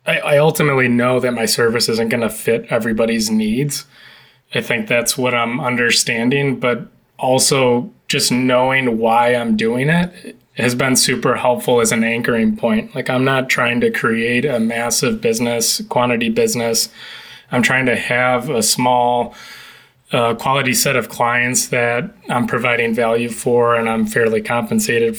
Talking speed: 155 wpm